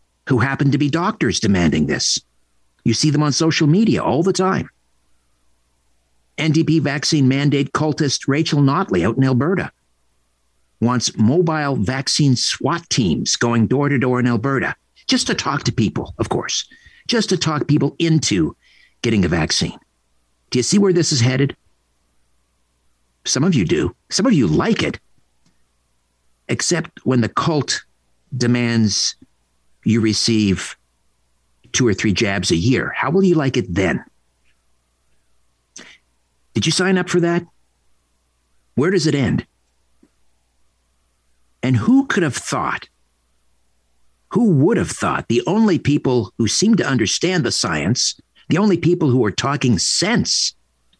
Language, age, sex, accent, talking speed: English, 50-69, male, American, 140 wpm